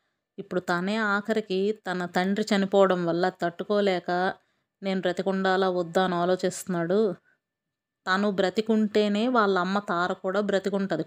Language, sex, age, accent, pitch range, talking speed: Telugu, female, 30-49, native, 180-205 Hz, 110 wpm